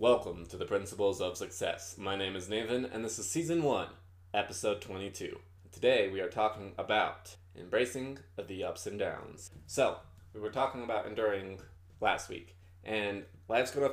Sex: male